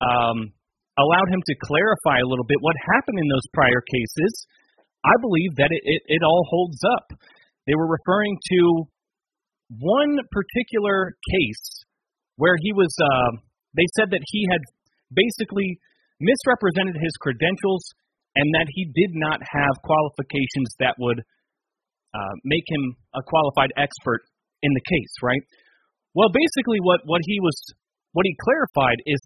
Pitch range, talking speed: 145-195 Hz, 150 wpm